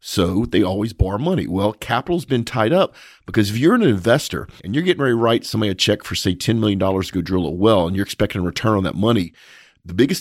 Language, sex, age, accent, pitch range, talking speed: English, male, 40-59, American, 95-125 Hz, 260 wpm